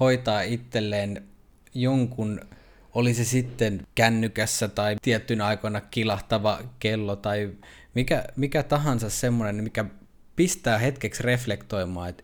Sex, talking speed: male, 105 wpm